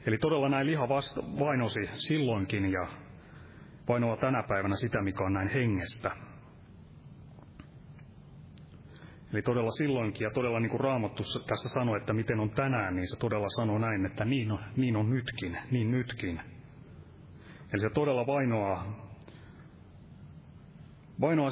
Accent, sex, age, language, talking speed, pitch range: native, male, 30-49, Finnish, 130 wpm, 105-130 Hz